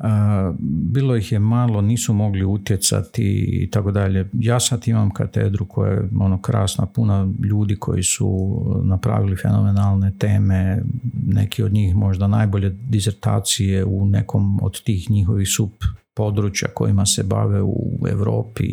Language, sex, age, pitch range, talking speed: Croatian, male, 50-69, 100-120 Hz, 130 wpm